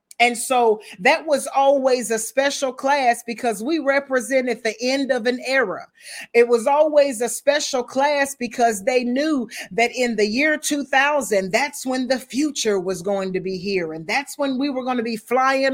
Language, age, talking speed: English, 40-59, 185 wpm